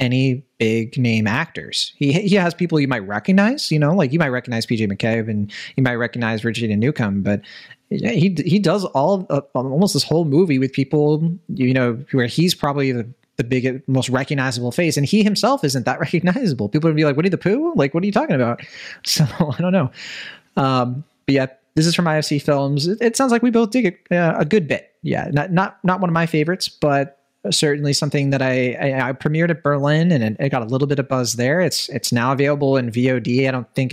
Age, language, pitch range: 20-39, English, 120-170 Hz